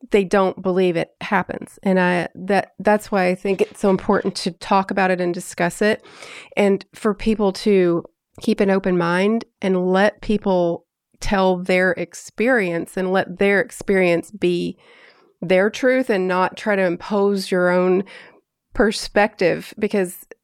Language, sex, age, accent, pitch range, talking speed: English, female, 30-49, American, 180-215 Hz, 155 wpm